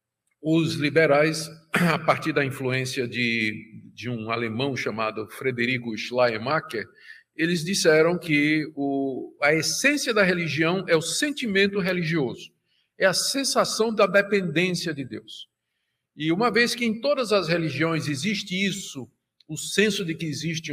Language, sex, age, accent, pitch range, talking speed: Portuguese, male, 50-69, Brazilian, 135-195 Hz, 135 wpm